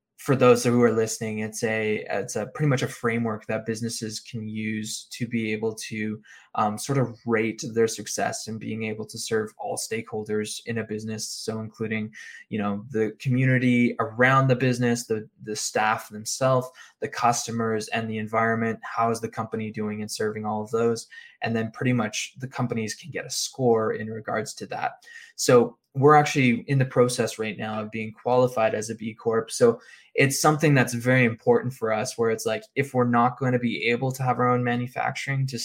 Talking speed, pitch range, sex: 200 wpm, 110-125 Hz, male